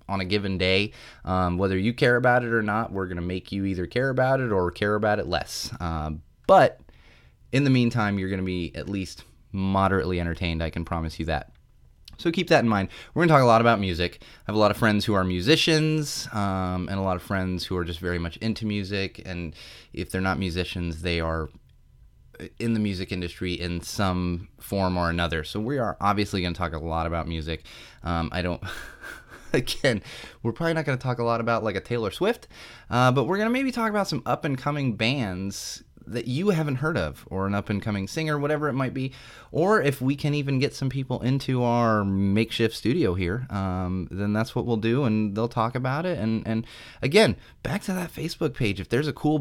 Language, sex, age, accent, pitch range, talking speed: English, male, 20-39, American, 90-125 Hz, 215 wpm